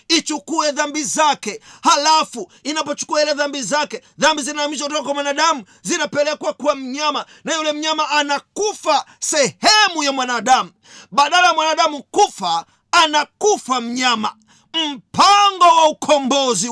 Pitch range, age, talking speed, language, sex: 265-325 Hz, 40-59, 115 wpm, Swahili, male